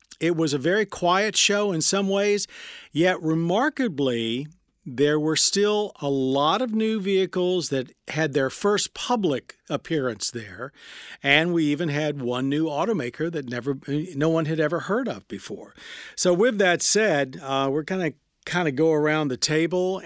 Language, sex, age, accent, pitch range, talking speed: English, male, 50-69, American, 130-175 Hz, 170 wpm